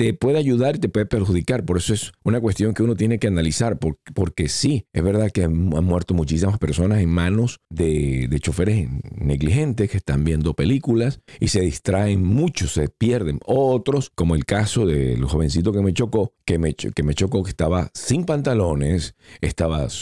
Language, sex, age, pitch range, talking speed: Spanish, male, 50-69, 80-115 Hz, 190 wpm